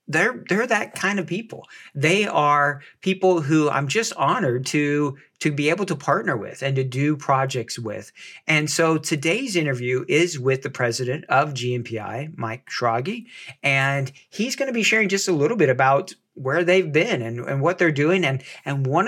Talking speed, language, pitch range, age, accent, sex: 185 wpm, English, 135-170 Hz, 50-69, American, male